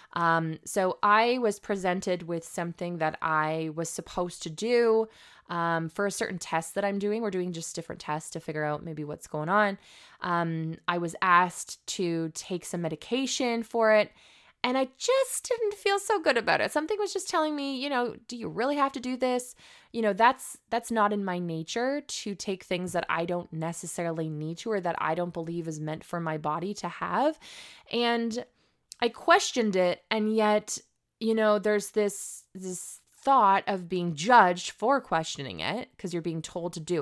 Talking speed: 195 wpm